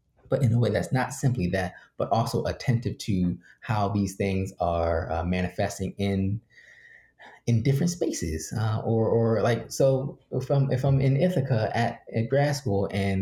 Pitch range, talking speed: 90-120 Hz, 170 wpm